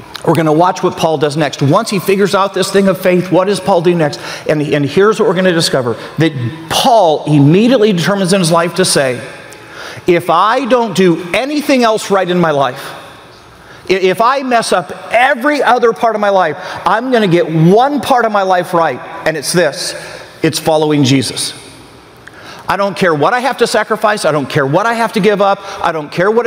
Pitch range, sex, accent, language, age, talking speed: 165-205 Hz, male, American, English, 50-69, 210 wpm